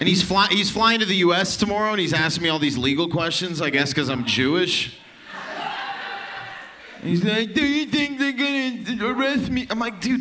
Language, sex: English, male